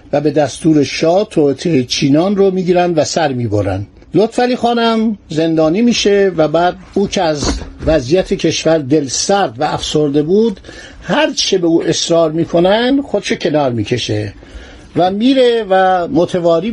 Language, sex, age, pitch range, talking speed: Persian, male, 60-79, 155-220 Hz, 145 wpm